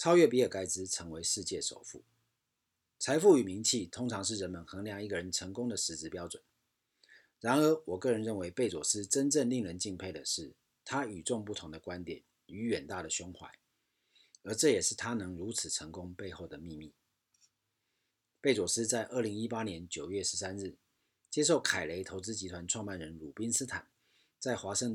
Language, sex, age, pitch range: Chinese, male, 40-59, 95-120 Hz